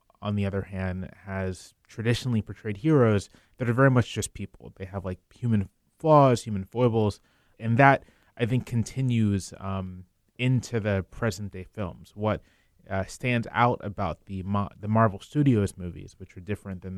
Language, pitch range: English, 95-110 Hz